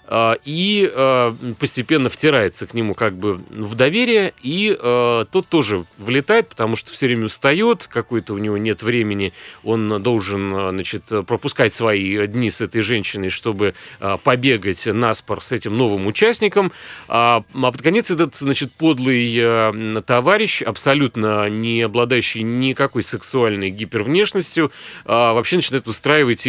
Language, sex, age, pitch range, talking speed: Russian, male, 30-49, 110-140 Hz, 120 wpm